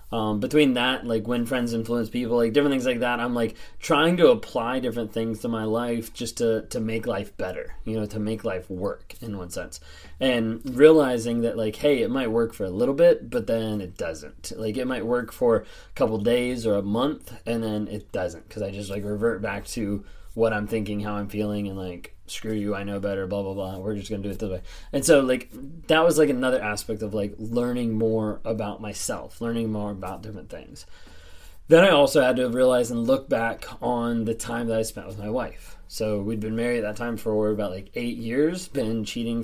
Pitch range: 105-120 Hz